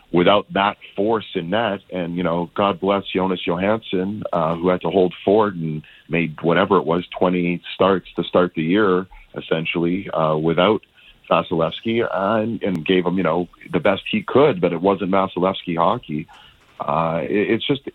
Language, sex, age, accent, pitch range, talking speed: English, male, 40-59, American, 85-105 Hz, 170 wpm